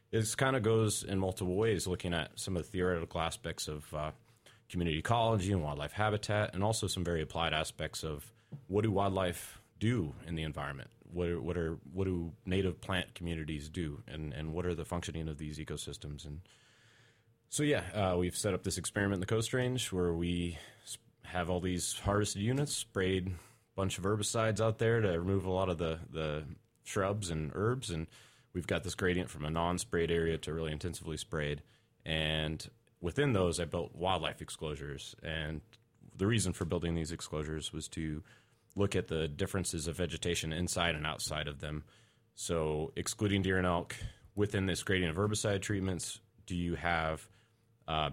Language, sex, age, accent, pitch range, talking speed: English, male, 30-49, American, 80-110 Hz, 180 wpm